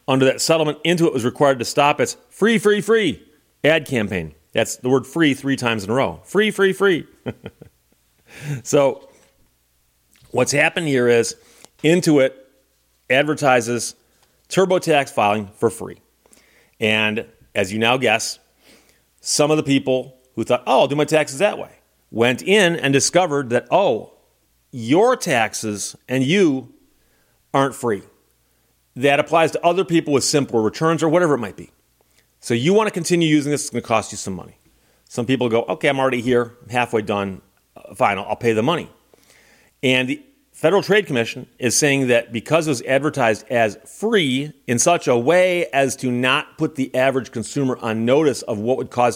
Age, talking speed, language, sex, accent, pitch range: 40-59, 170 wpm, English, male, American, 115-155 Hz